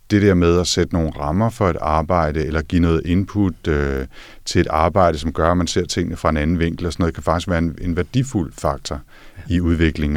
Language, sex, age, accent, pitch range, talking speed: Danish, male, 50-69, native, 80-100 Hz, 235 wpm